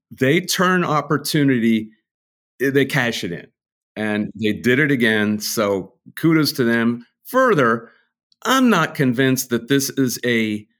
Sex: male